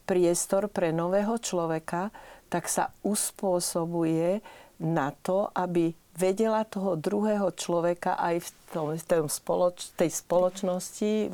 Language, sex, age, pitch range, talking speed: Slovak, female, 40-59, 175-205 Hz, 100 wpm